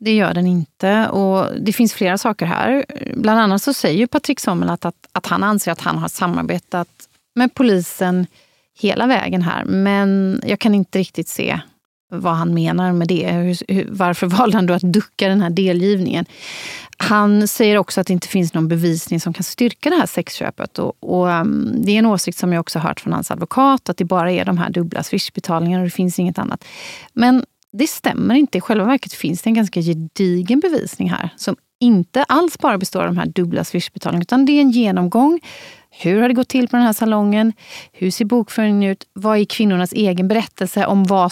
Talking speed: 210 wpm